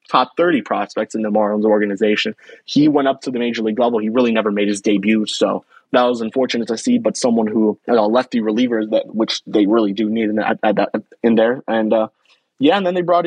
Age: 20-39